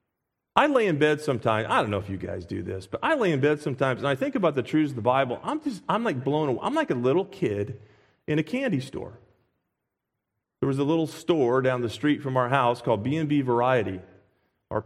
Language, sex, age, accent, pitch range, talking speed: English, male, 40-59, American, 115-165 Hz, 240 wpm